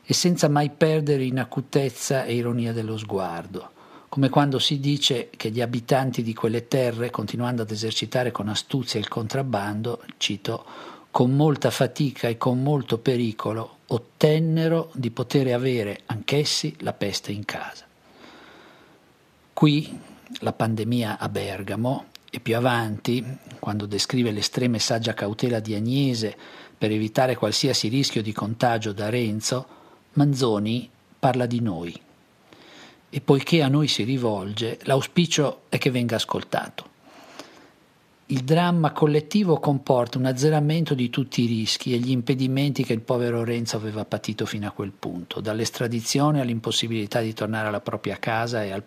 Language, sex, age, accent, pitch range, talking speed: Italian, male, 50-69, native, 110-140 Hz, 140 wpm